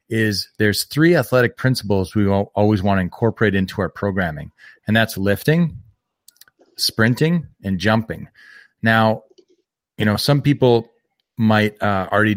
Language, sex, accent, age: English, male, American, 30-49